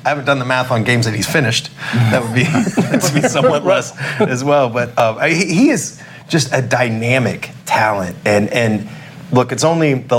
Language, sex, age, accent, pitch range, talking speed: English, male, 30-49, American, 100-140 Hz, 200 wpm